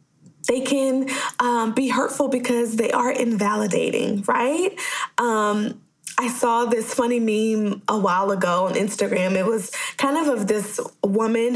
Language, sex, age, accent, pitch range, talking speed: English, female, 20-39, American, 210-280 Hz, 145 wpm